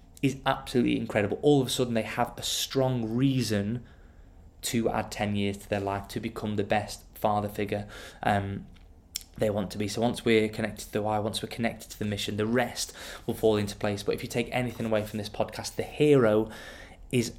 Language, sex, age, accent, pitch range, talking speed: English, male, 20-39, British, 100-115 Hz, 210 wpm